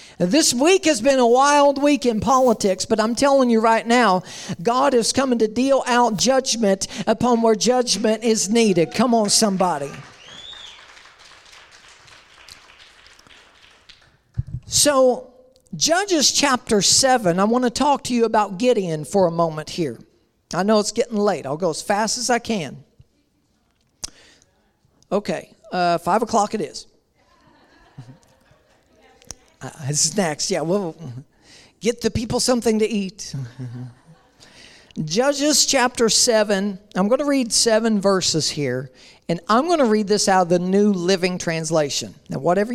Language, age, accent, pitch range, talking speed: English, 50-69, American, 170-245 Hz, 140 wpm